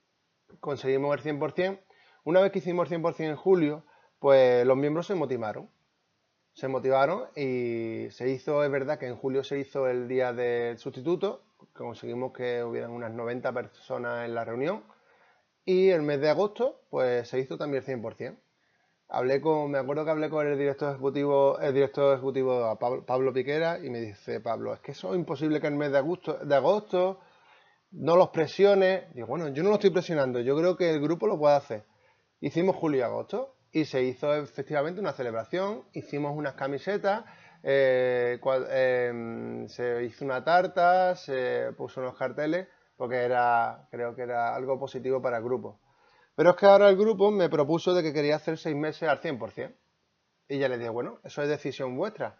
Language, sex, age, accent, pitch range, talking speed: Spanish, male, 30-49, Spanish, 130-165 Hz, 180 wpm